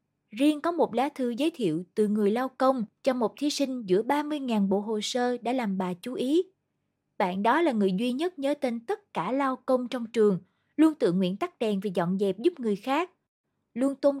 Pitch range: 195-275 Hz